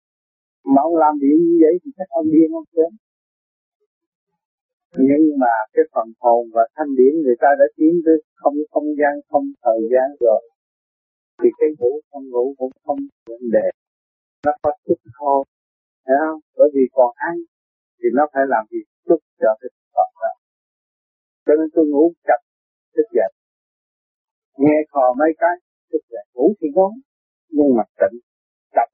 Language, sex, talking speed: Vietnamese, male, 170 wpm